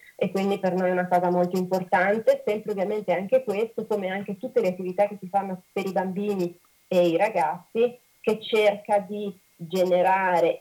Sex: female